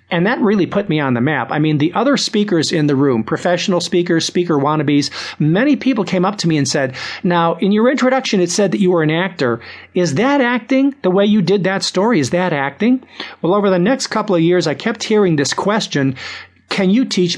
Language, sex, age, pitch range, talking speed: English, male, 50-69, 150-205 Hz, 230 wpm